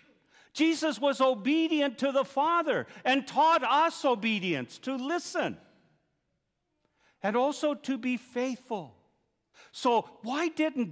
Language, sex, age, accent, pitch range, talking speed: English, male, 50-69, American, 200-290 Hz, 110 wpm